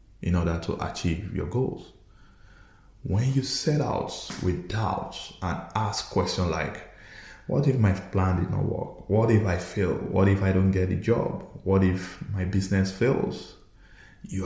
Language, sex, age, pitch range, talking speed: English, male, 20-39, 90-105 Hz, 165 wpm